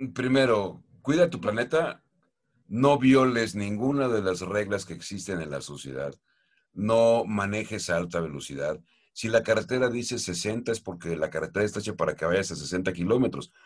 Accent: Mexican